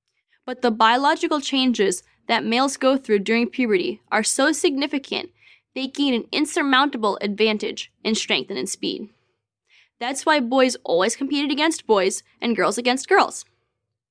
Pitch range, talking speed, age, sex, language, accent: 220-285 Hz, 145 wpm, 10-29, female, English, American